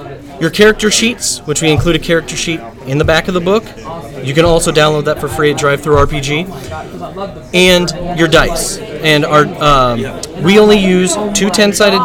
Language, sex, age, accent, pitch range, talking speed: English, male, 30-49, American, 145-180 Hz, 180 wpm